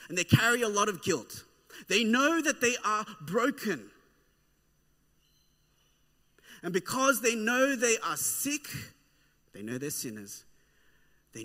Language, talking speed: English, 130 wpm